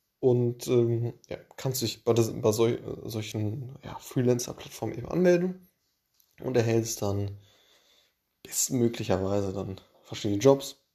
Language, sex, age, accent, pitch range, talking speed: German, male, 20-39, German, 105-125 Hz, 120 wpm